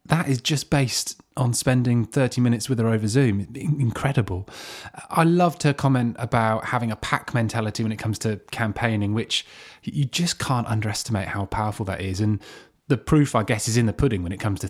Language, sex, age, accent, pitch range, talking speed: English, male, 20-39, British, 95-130 Hz, 200 wpm